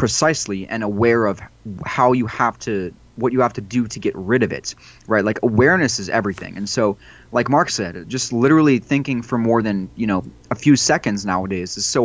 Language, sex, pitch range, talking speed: English, male, 100-125 Hz, 210 wpm